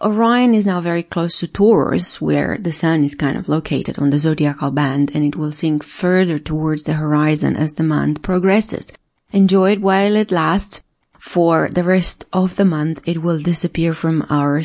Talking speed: 190 wpm